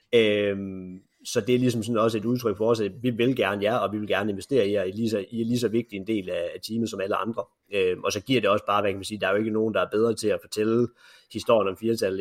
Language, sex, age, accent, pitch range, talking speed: Danish, male, 30-49, native, 100-115 Hz, 305 wpm